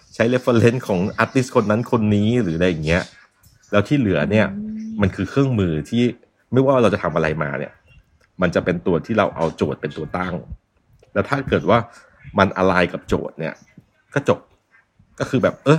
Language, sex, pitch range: Thai, male, 95-120 Hz